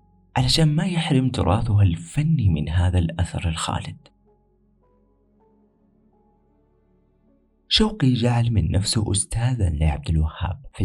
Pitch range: 85-115 Hz